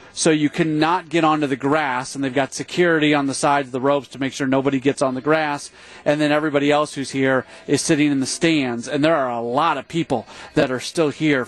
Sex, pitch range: male, 135-170 Hz